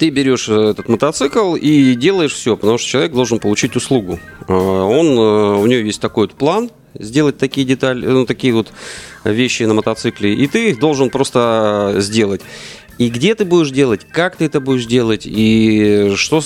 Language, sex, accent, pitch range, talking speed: Russian, male, native, 100-135 Hz, 170 wpm